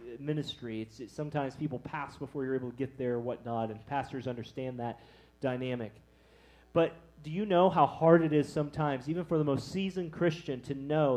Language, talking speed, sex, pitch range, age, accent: English, 195 wpm, male, 120-160 Hz, 30-49, American